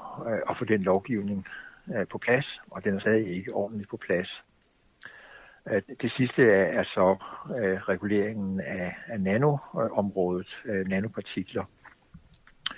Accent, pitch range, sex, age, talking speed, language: native, 100-125 Hz, male, 60-79, 105 wpm, Danish